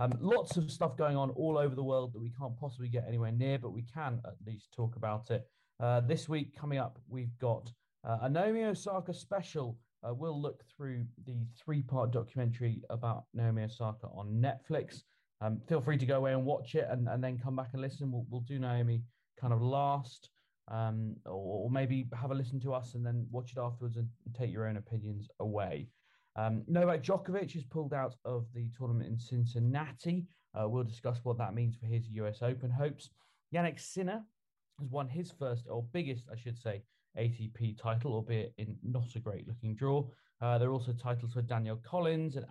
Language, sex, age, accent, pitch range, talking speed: English, male, 30-49, British, 115-140 Hz, 200 wpm